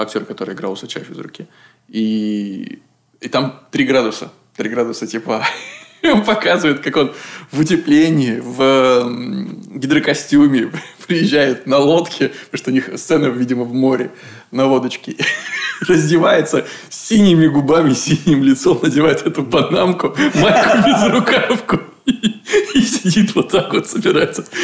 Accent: native